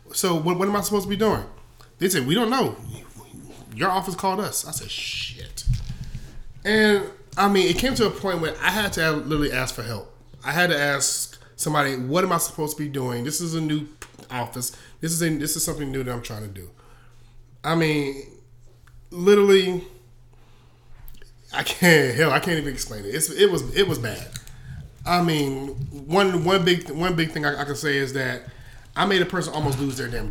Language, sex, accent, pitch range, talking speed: English, male, American, 125-175 Hz, 210 wpm